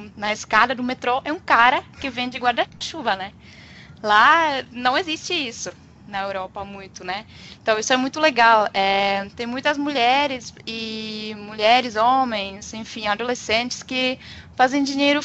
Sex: female